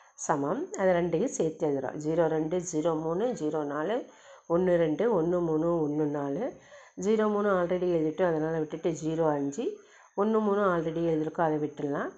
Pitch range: 150-180 Hz